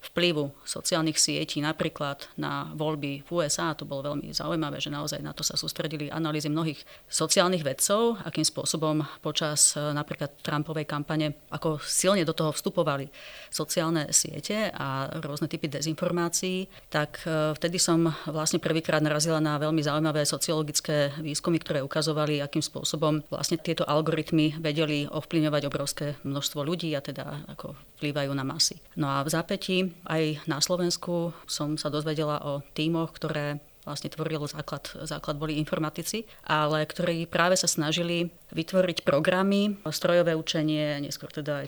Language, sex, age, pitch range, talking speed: Slovak, female, 30-49, 150-170 Hz, 145 wpm